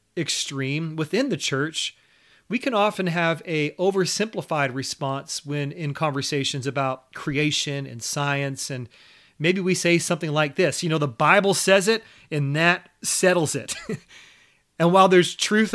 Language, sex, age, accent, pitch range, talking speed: English, male, 30-49, American, 140-180 Hz, 150 wpm